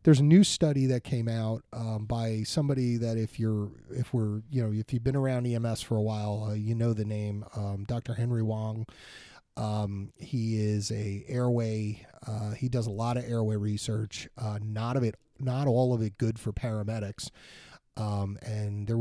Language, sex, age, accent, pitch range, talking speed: English, male, 30-49, American, 105-130 Hz, 195 wpm